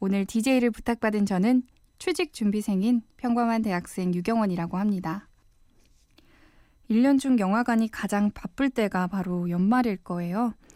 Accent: native